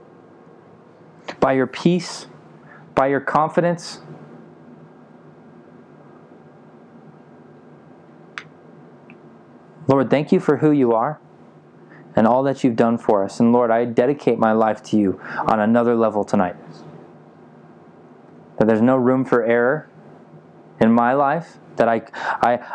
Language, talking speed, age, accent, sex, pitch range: English, 115 wpm, 20-39, American, male, 115-140 Hz